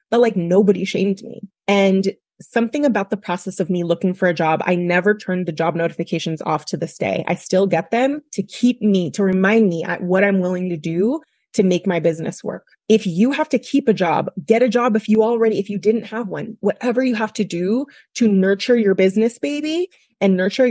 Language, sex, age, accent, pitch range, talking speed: English, female, 20-39, American, 180-220 Hz, 225 wpm